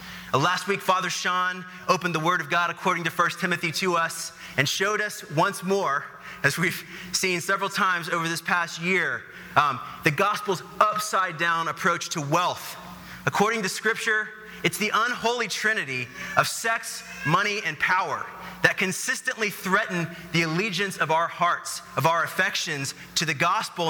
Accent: American